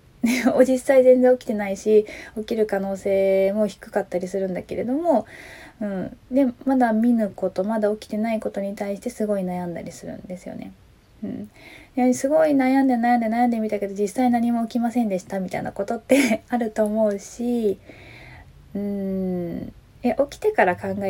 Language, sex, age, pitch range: Japanese, female, 20-39, 190-235 Hz